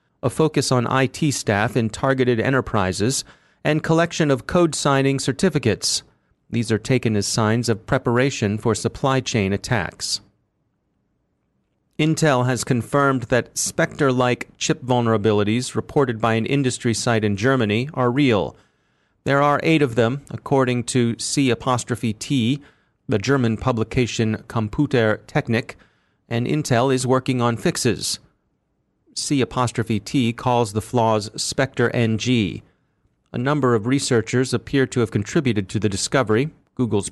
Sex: male